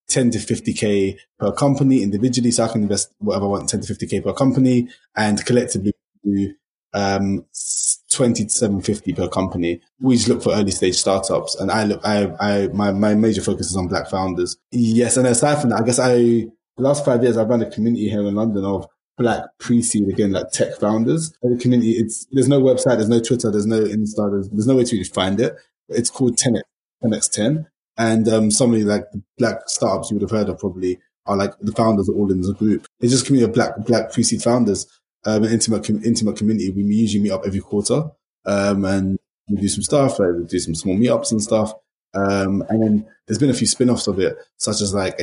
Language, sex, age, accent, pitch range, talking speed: English, male, 20-39, British, 100-120 Hz, 230 wpm